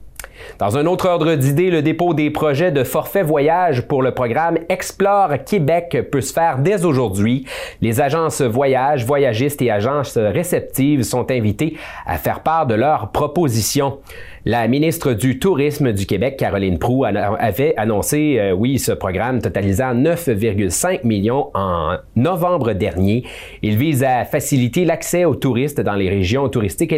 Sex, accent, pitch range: male, Canadian, 100-145 Hz